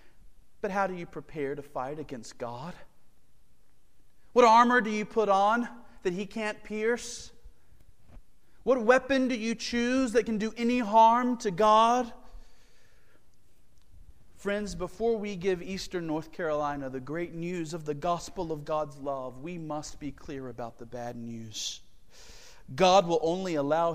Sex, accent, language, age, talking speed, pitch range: male, American, English, 40-59, 150 wpm, 140-220 Hz